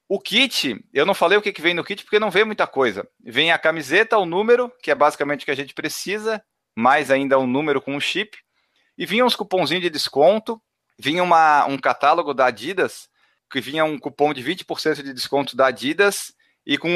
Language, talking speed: Portuguese, 215 wpm